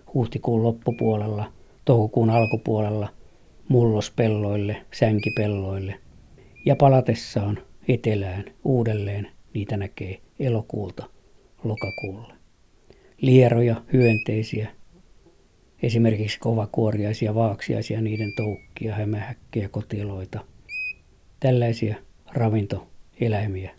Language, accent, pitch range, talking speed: Finnish, native, 105-120 Hz, 65 wpm